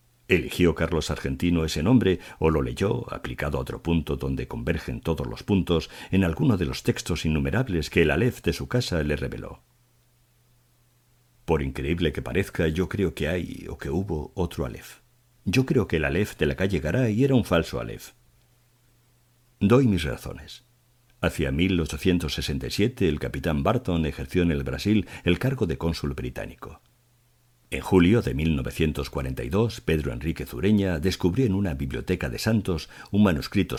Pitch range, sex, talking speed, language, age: 80-120 Hz, male, 160 wpm, Spanish, 50-69